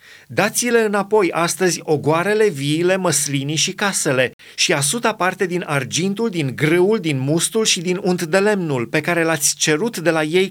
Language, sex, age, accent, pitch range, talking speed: Romanian, male, 30-49, native, 130-180 Hz, 165 wpm